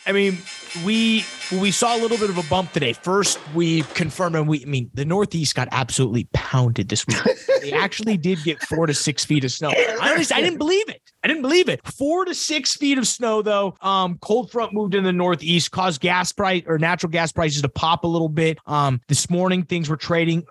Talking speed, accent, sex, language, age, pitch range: 225 wpm, American, male, English, 30-49, 150-195 Hz